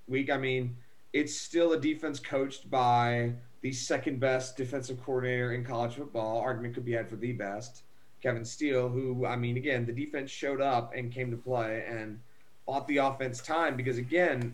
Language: English